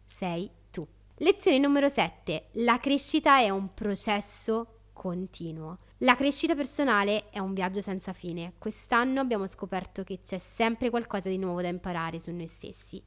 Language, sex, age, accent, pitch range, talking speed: Italian, female, 20-39, native, 190-245 Hz, 150 wpm